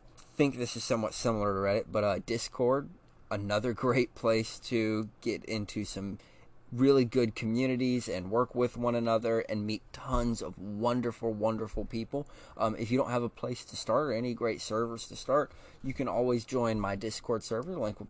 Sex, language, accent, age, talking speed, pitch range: male, English, American, 20-39, 190 wpm, 110-125 Hz